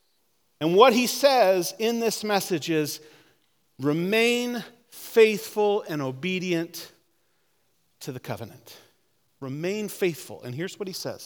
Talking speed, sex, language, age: 115 wpm, male, English, 40-59